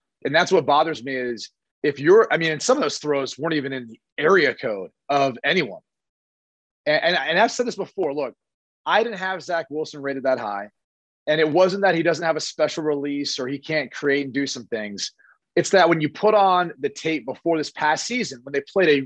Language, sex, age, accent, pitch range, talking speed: English, male, 30-49, American, 140-185 Hz, 225 wpm